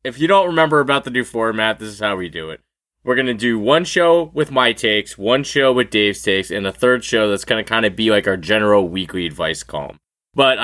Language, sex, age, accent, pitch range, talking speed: English, male, 20-39, American, 110-165 Hz, 255 wpm